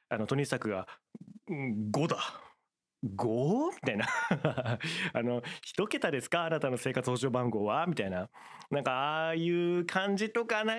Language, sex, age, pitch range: Japanese, male, 30-49, 110-180 Hz